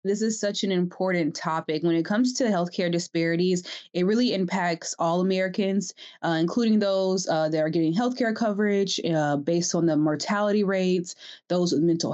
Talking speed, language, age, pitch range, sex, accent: 175 wpm, English, 20-39, 170-205 Hz, female, American